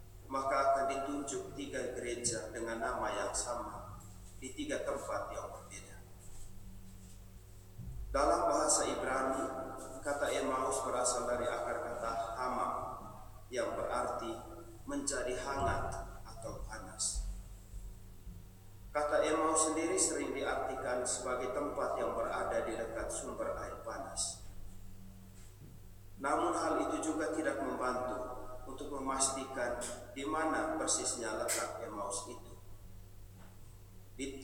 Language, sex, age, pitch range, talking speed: Indonesian, male, 40-59, 95-130 Hz, 105 wpm